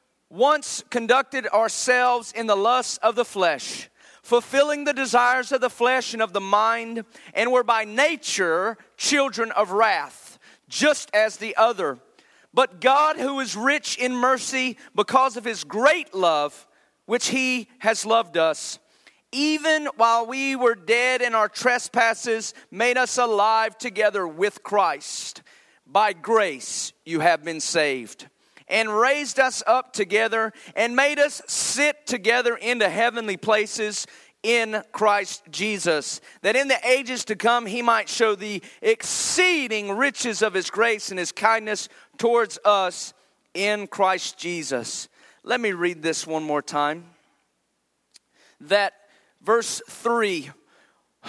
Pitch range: 210-260 Hz